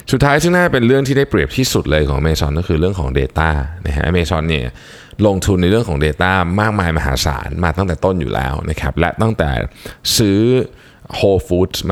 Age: 20-39